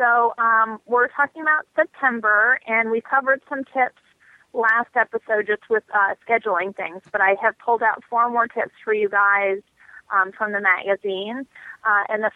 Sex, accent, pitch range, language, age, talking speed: female, American, 195-225 Hz, English, 30-49, 175 wpm